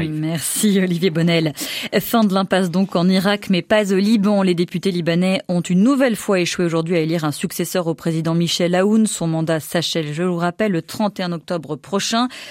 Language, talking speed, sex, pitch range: French, 190 wpm, female, 175-230 Hz